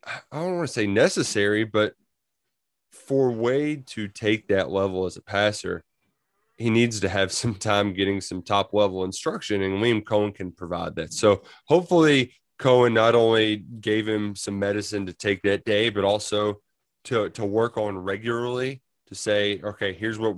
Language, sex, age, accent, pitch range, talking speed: English, male, 20-39, American, 100-125 Hz, 170 wpm